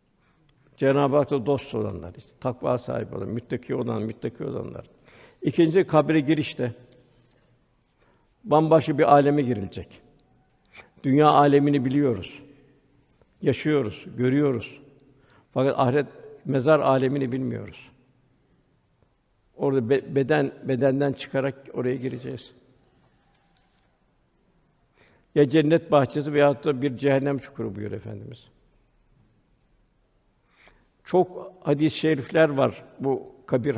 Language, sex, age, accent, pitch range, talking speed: Turkish, male, 60-79, native, 125-150 Hz, 90 wpm